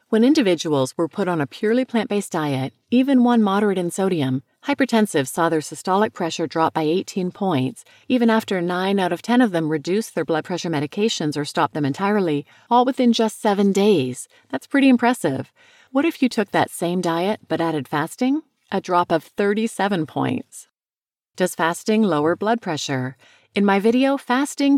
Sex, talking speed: female, 175 wpm